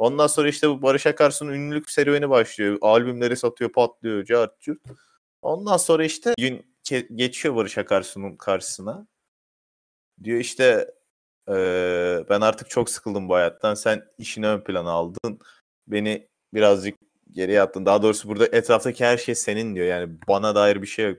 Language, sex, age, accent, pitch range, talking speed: Turkish, male, 30-49, native, 100-150 Hz, 150 wpm